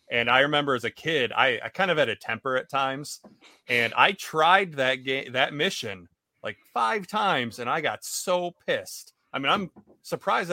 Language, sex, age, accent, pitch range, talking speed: English, male, 30-49, American, 115-150 Hz, 195 wpm